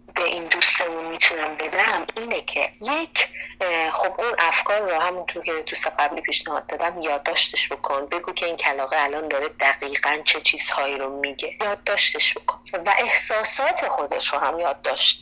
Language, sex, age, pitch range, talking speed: Persian, female, 30-49, 160-220 Hz, 160 wpm